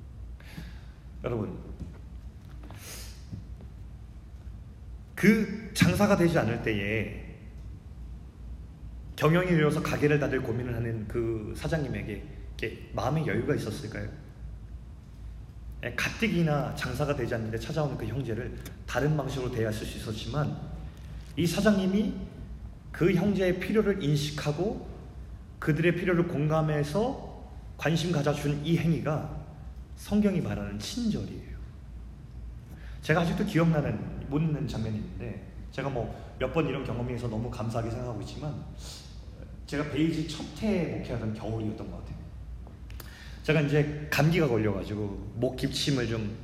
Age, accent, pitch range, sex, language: 30-49, native, 100-160 Hz, male, Korean